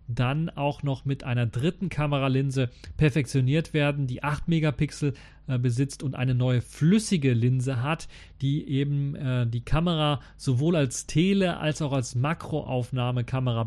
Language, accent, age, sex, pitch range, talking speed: German, German, 40-59, male, 125-150 Hz, 140 wpm